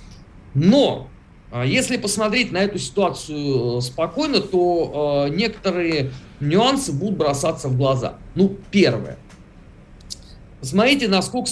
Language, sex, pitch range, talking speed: Russian, male, 130-195 Hz, 95 wpm